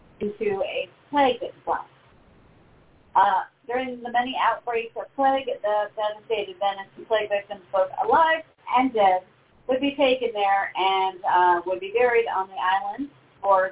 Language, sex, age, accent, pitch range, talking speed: English, female, 40-59, American, 190-255 Hz, 150 wpm